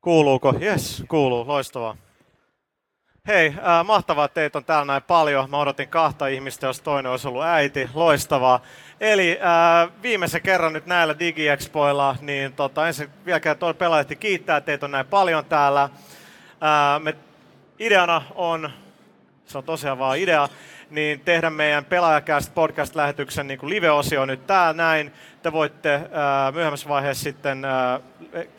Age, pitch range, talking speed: 30-49, 140-165 Hz, 145 wpm